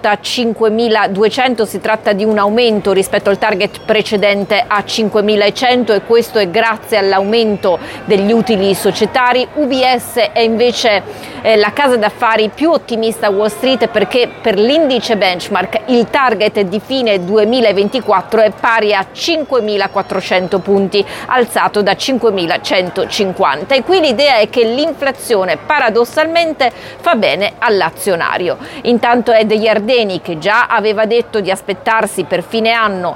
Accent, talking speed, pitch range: native, 130 wpm, 205-240 Hz